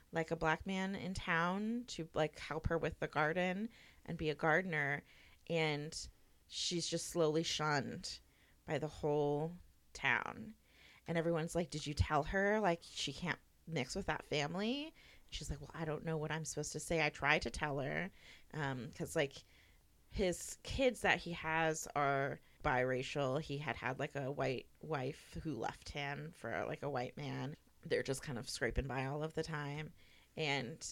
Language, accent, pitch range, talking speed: English, American, 145-170 Hz, 180 wpm